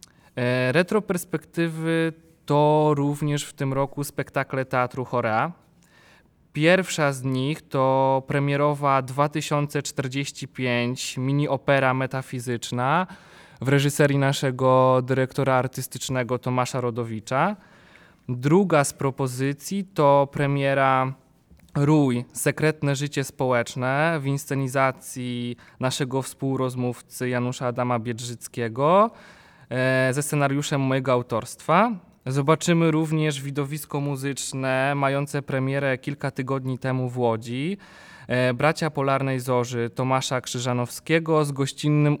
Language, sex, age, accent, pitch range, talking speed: Polish, male, 20-39, native, 130-150 Hz, 90 wpm